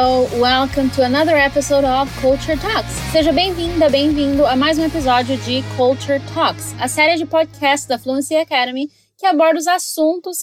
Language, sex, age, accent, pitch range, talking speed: Portuguese, female, 20-39, Brazilian, 250-320 Hz, 165 wpm